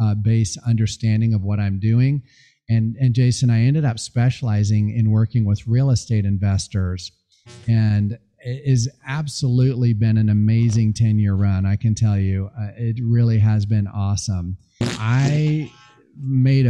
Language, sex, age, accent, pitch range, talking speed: English, male, 40-59, American, 105-125 Hz, 150 wpm